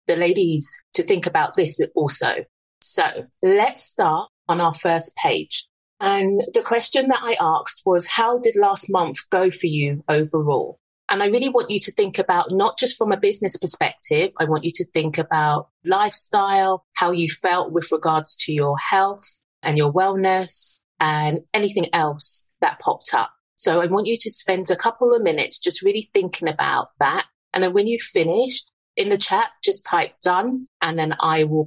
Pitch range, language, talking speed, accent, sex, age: 155-230 Hz, English, 185 wpm, British, female, 30-49